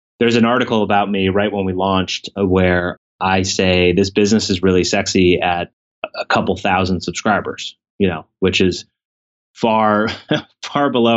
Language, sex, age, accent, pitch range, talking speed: English, male, 30-49, American, 95-115 Hz, 155 wpm